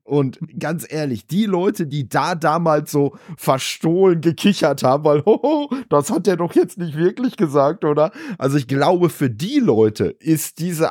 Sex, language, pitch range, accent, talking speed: male, German, 125-155 Hz, German, 170 wpm